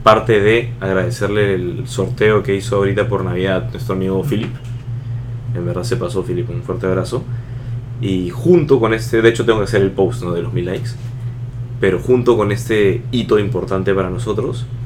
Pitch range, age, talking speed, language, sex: 100-125 Hz, 20-39, 185 wpm, Spanish, male